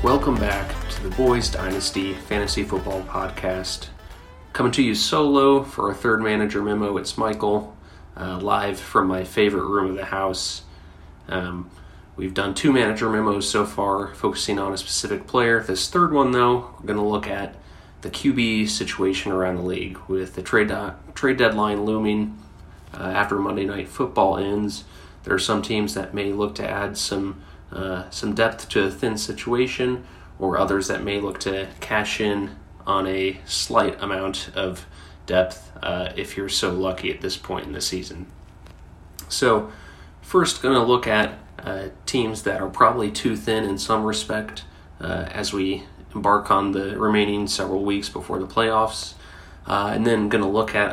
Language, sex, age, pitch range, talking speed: English, male, 30-49, 90-105 Hz, 175 wpm